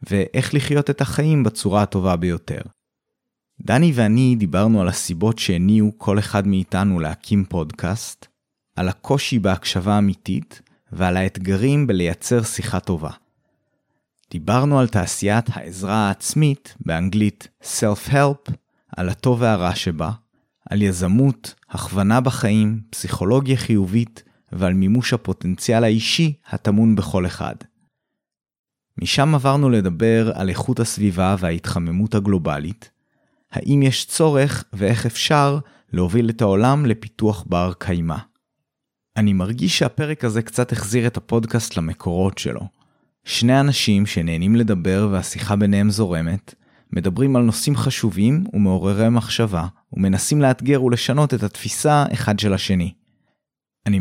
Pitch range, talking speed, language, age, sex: 95-125 Hz, 115 wpm, Hebrew, 30-49, male